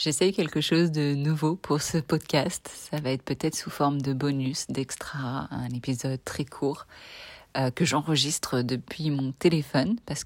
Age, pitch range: 30-49, 135-165 Hz